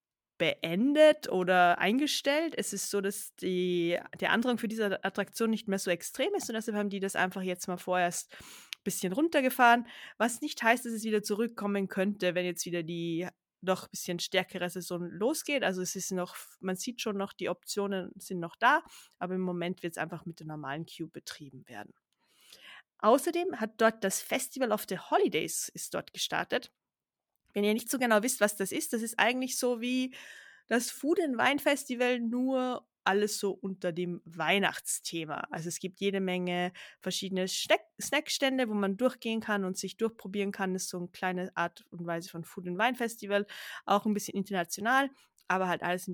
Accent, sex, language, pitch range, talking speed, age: German, female, German, 180-230 Hz, 190 wpm, 20-39